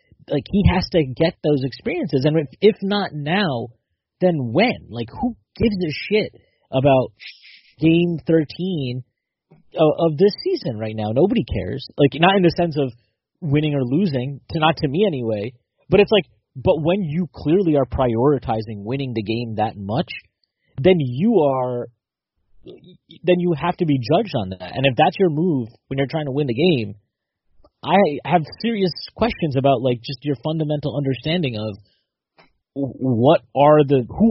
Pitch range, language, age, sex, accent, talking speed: 120-170 Hz, English, 30-49, male, American, 170 wpm